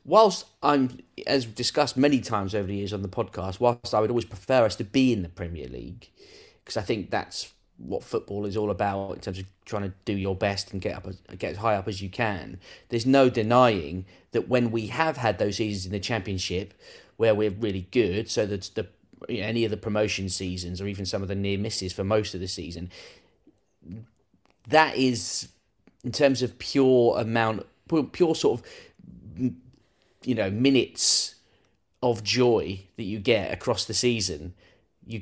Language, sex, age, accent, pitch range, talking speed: English, male, 30-49, British, 95-115 Hz, 195 wpm